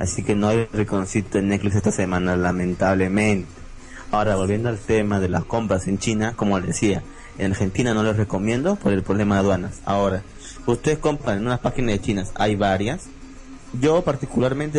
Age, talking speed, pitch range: 30-49, 180 wpm, 105-135 Hz